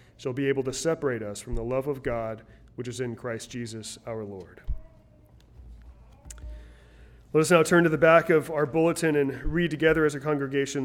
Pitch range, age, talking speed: 115-145 Hz, 30-49, 190 wpm